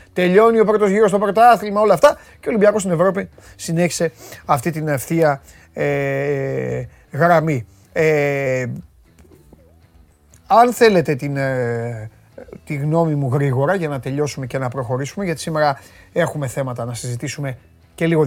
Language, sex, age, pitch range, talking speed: Greek, male, 30-49, 130-195 Hz, 135 wpm